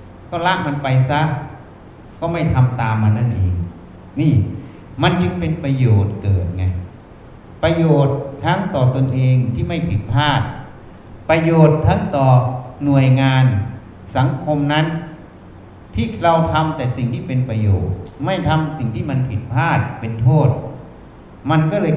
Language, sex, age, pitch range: Thai, male, 60-79, 105-165 Hz